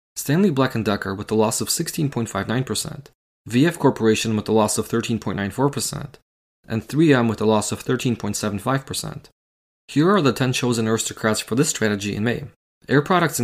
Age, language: 20-39, English